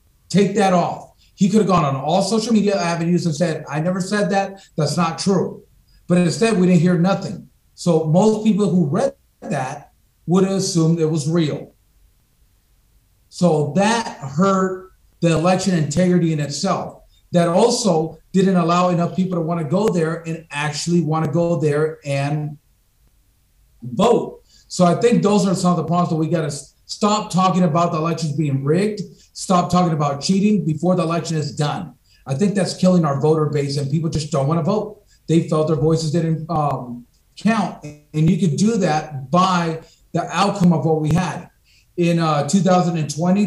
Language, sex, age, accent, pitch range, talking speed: English, male, 40-59, American, 155-185 Hz, 180 wpm